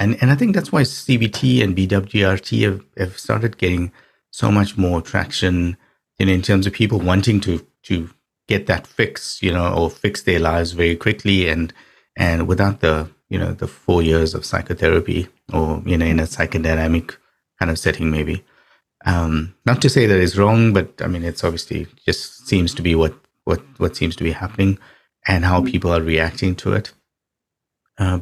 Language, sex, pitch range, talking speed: English, male, 85-105 Hz, 190 wpm